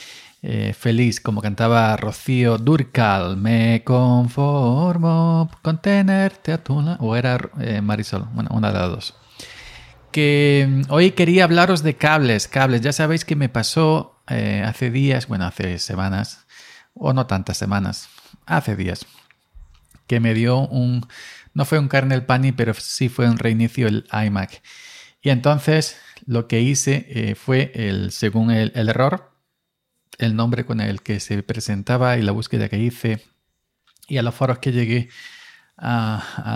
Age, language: 40-59, Spanish